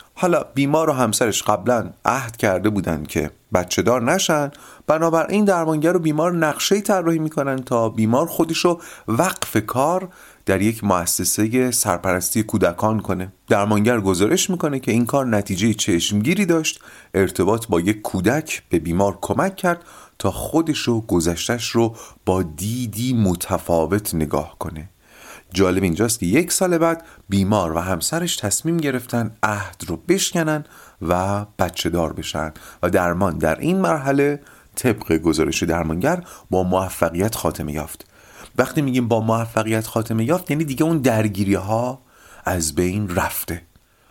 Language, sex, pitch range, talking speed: Persian, male, 95-145 Hz, 135 wpm